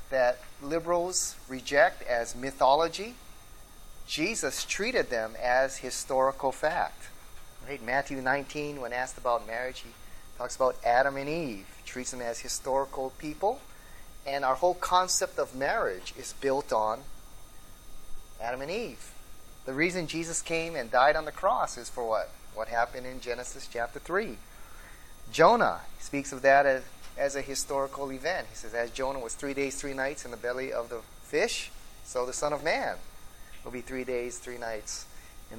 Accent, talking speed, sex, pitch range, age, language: American, 160 wpm, male, 125-155 Hz, 30-49, English